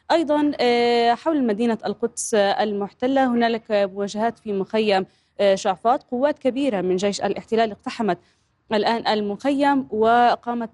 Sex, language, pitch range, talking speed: female, Arabic, 205-240 Hz, 105 wpm